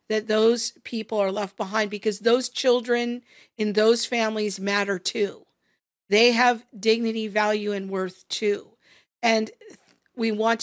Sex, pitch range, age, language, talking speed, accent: female, 205-250 Hz, 50-69, English, 135 wpm, American